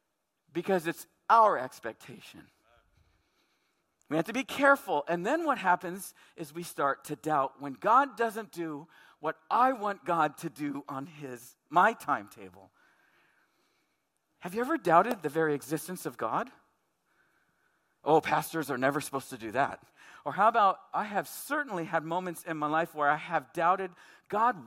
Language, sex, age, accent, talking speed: English, male, 50-69, American, 160 wpm